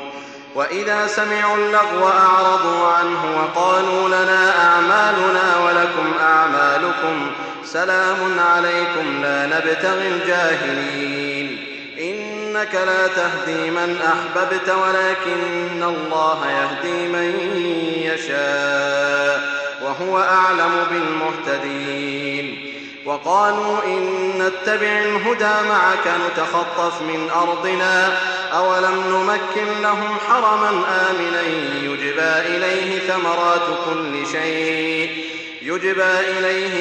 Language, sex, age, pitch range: Arabic, male, 30-49, 160-185 Hz